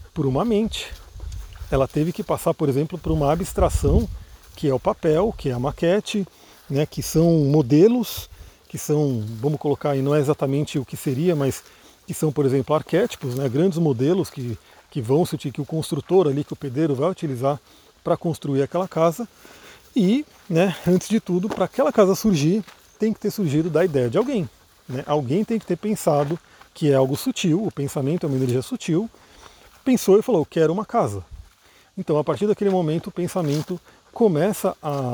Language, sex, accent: Portuguese, male, Brazilian